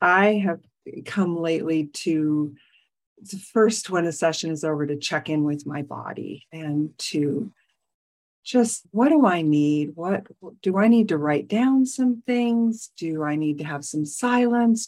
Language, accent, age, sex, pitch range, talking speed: English, American, 50-69, female, 155-205 Hz, 165 wpm